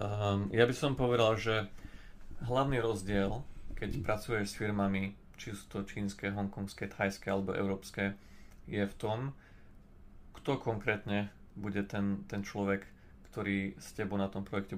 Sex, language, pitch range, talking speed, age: male, Slovak, 95-105 Hz, 140 wpm, 30-49